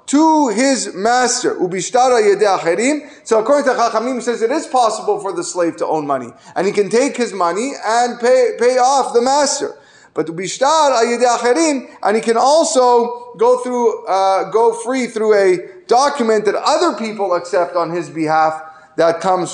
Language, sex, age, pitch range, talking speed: English, male, 30-49, 175-245 Hz, 155 wpm